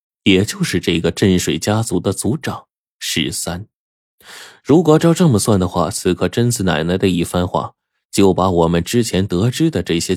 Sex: male